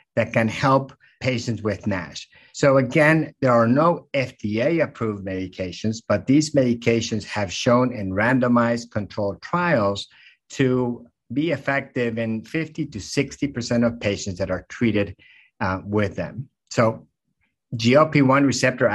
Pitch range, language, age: 105-130 Hz, English, 50-69